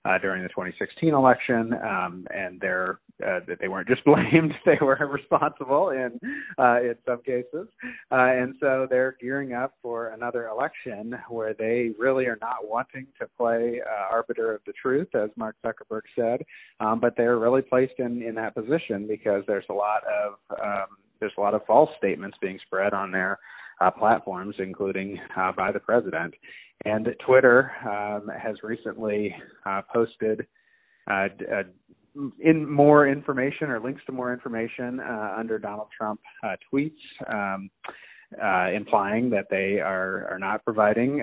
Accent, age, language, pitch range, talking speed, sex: American, 30-49, English, 110-135 Hz, 165 wpm, male